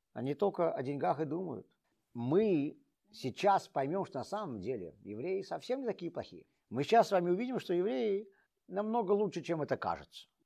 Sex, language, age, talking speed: male, Russian, 50-69, 170 wpm